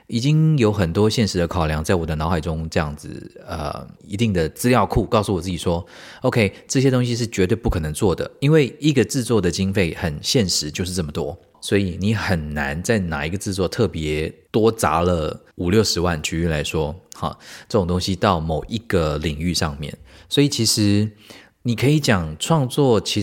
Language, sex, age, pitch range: Chinese, male, 20-39, 85-115 Hz